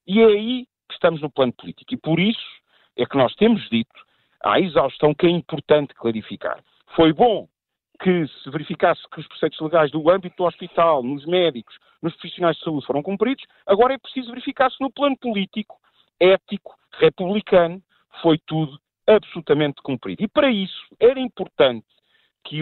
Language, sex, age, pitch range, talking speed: Portuguese, male, 50-69, 150-235 Hz, 165 wpm